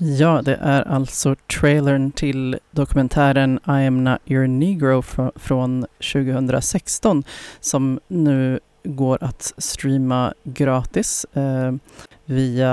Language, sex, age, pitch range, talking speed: Swedish, female, 30-49, 130-140 Hz, 110 wpm